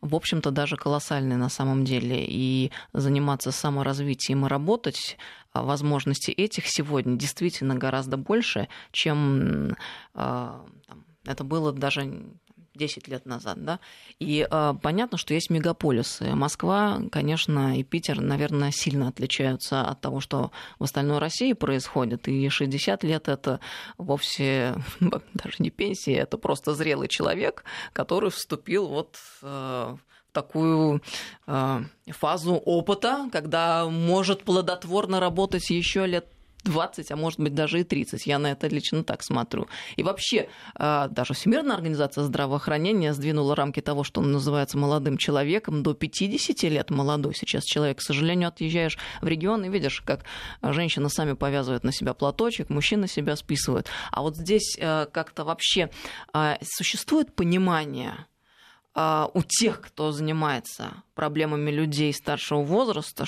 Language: Russian